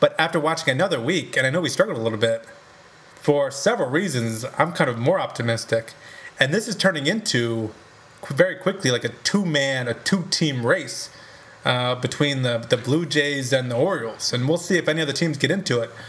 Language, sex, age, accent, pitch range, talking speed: English, male, 30-49, American, 125-165 Hz, 200 wpm